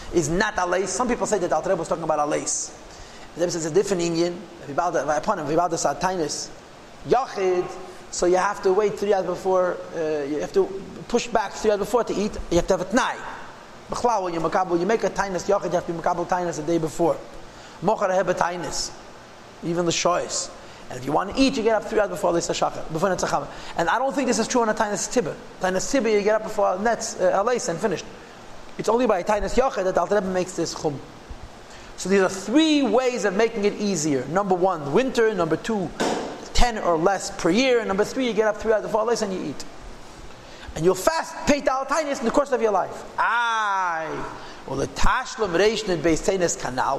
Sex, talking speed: male, 210 wpm